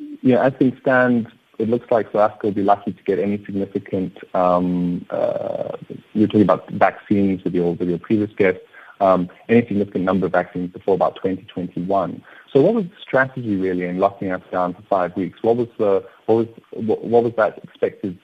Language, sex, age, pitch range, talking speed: English, male, 30-49, 90-120 Hz, 205 wpm